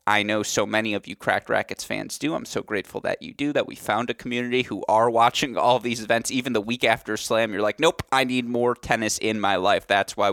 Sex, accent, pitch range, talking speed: male, American, 105-120 Hz, 255 wpm